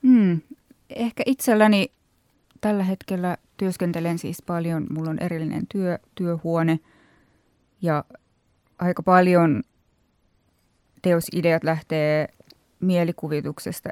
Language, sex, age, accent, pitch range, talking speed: Finnish, female, 20-39, native, 155-180 Hz, 80 wpm